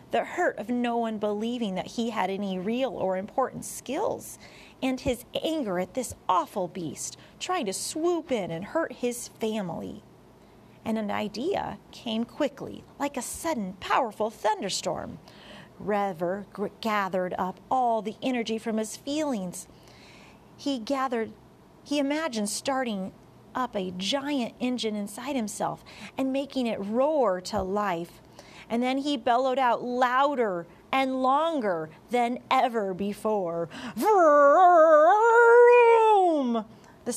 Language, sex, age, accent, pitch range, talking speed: English, female, 40-59, American, 190-265 Hz, 125 wpm